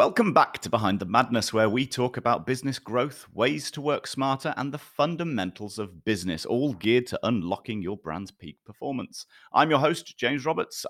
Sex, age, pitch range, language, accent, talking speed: male, 30-49, 95-130 Hz, English, British, 185 wpm